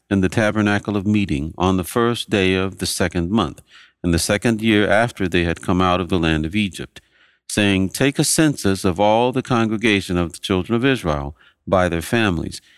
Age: 50-69